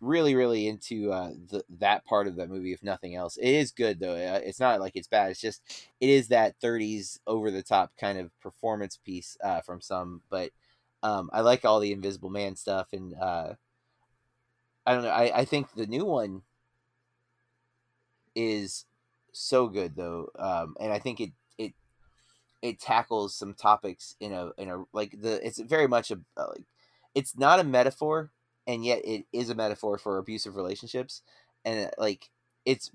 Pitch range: 95-120 Hz